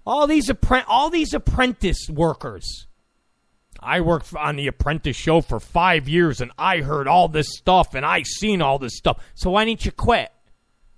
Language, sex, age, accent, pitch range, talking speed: English, male, 40-59, American, 150-230 Hz, 180 wpm